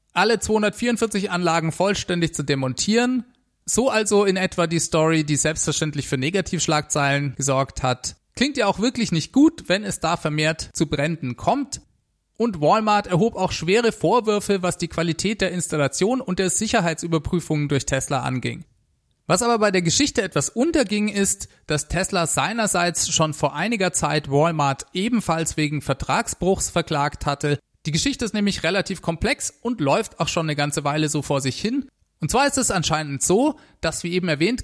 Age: 30-49